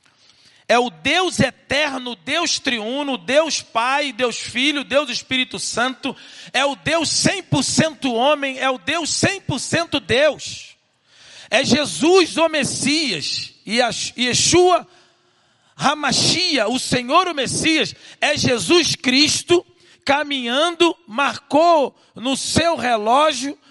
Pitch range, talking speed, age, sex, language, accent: 230-300 Hz, 110 wpm, 40-59, male, Portuguese, Brazilian